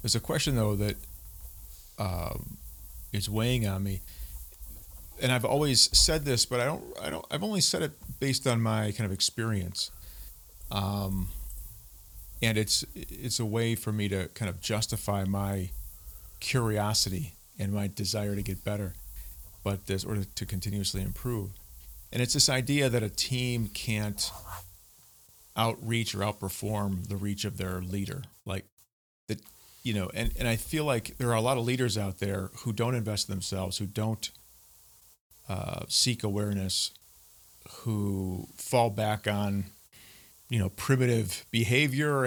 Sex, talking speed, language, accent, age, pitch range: male, 150 wpm, English, American, 40-59, 95-115 Hz